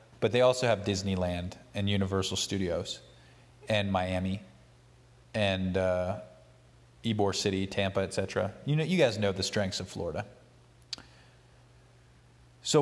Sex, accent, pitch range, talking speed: male, American, 100-130 Hz, 120 wpm